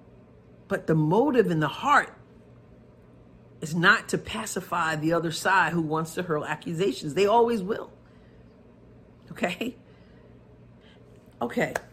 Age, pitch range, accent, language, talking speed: 40-59, 145-195 Hz, American, English, 115 wpm